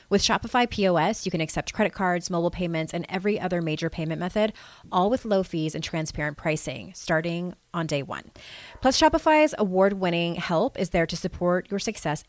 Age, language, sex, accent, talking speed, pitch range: 30-49, English, female, American, 180 wpm, 155-210 Hz